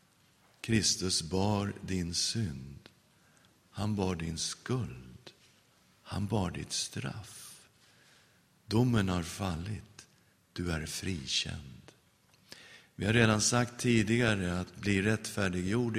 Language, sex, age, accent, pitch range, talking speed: English, male, 50-69, Swedish, 90-115 Hz, 100 wpm